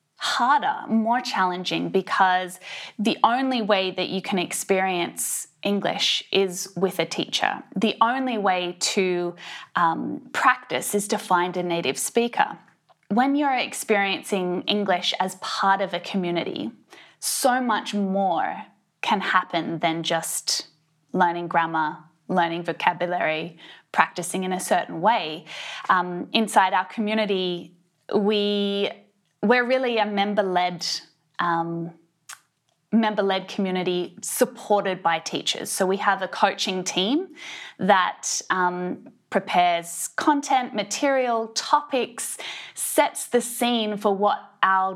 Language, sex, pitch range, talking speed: English, female, 170-215 Hz, 115 wpm